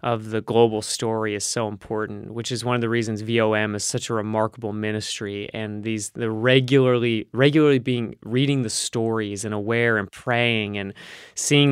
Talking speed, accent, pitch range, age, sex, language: 175 wpm, American, 110-130 Hz, 20-39, male, English